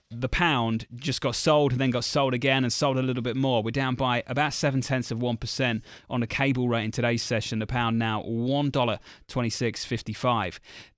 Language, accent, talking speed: English, British, 185 wpm